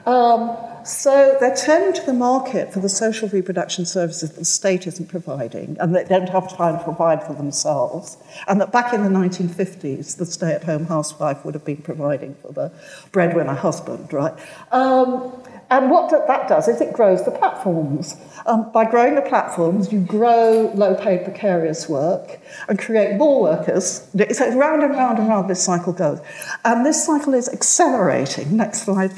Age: 50-69